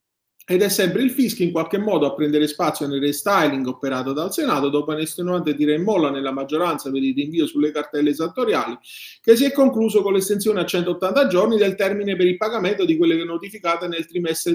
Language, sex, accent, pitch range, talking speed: Italian, male, native, 140-200 Hz, 200 wpm